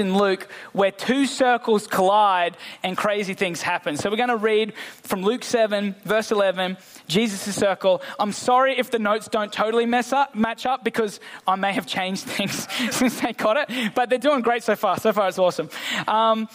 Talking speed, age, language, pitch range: 190 wpm, 20-39, English, 195-240 Hz